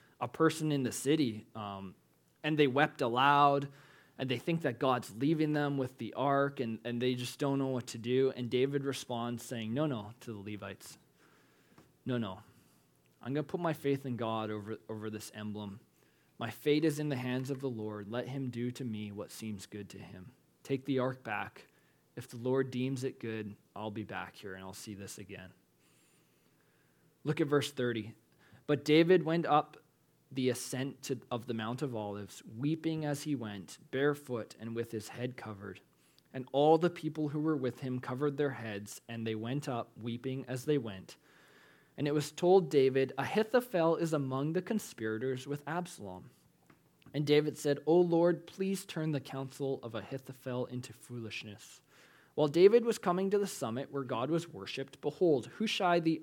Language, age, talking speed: English, 20-39, 185 wpm